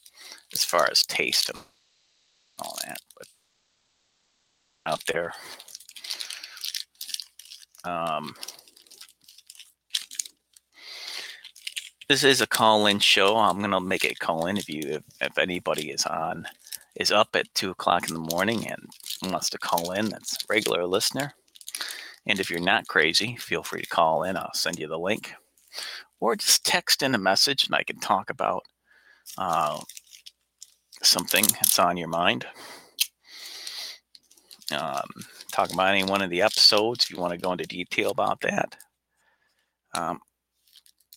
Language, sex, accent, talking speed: English, male, American, 140 wpm